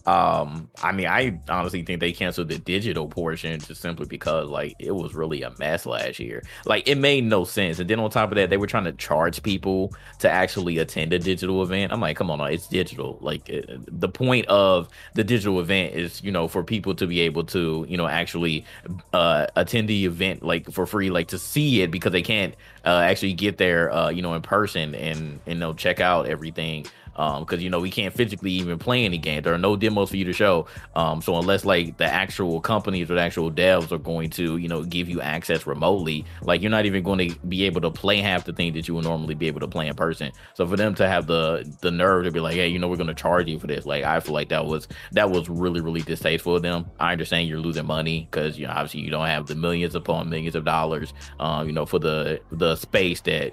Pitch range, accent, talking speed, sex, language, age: 80-95 Hz, American, 250 wpm, male, English, 20-39